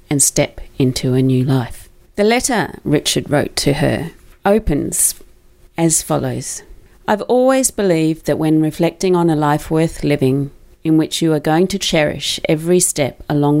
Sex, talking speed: female, 160 wpm